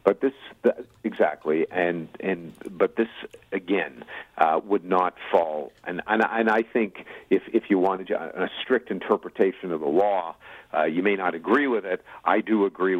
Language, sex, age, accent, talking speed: English, male, 50-69, American, 175 wpm